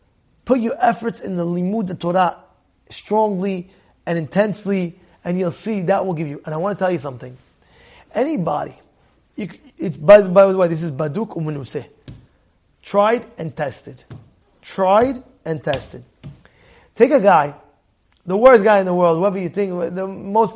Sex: male